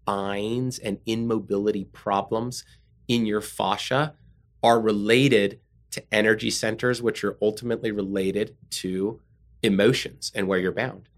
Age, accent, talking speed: 30-49, American, 120 wpm